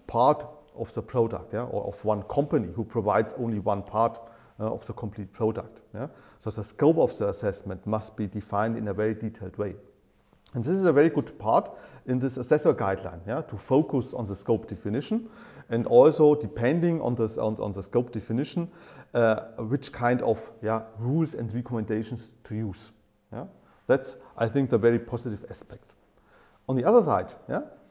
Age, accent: 40-59, German